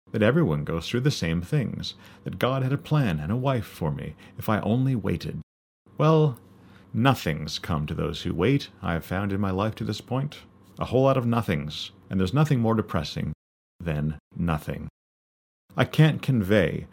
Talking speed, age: 185 wpm, 40-59